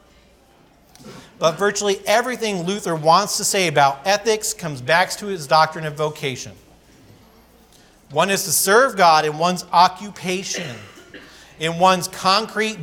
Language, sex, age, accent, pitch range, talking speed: English, male, 40-59, American, 155-205 Hz, 125 wpm